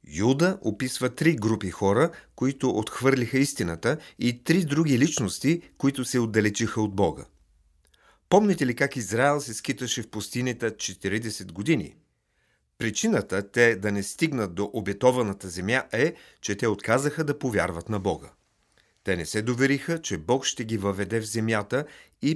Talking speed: 150 wpm